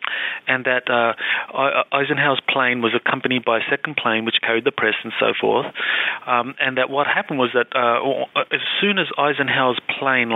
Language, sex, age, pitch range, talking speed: English, male, 30-49, 115-130 Hz, 180 wpm